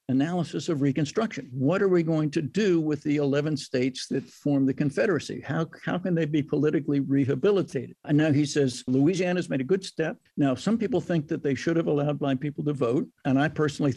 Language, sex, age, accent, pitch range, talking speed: English, male, 60-79, American, 135-165 Hz, 210 wpm